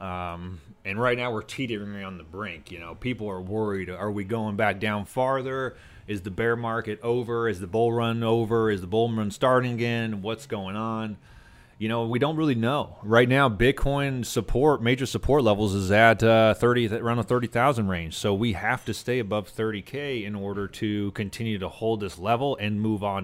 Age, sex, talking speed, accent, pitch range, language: 30-49, male, 205 wpm, American, 100-120 Hz, English